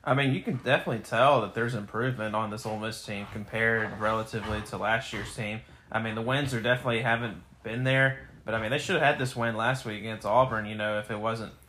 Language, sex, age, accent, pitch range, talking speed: English, male, 30-49, American, 110-120 Hz, 240 wpm